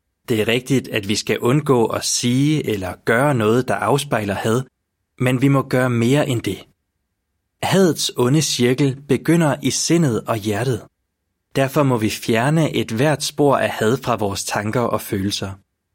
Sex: male